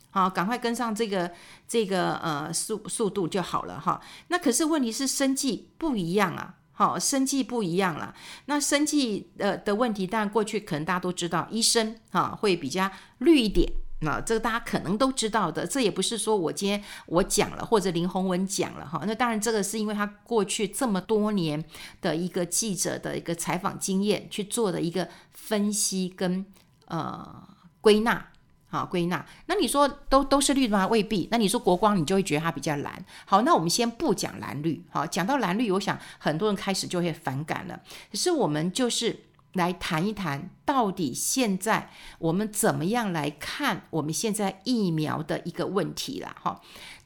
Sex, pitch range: female, 180-235 Hz